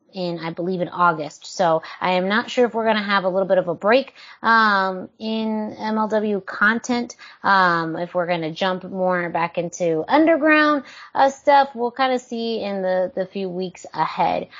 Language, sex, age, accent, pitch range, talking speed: English, female, 30-49, American, 170-210 Hz, 195 wpm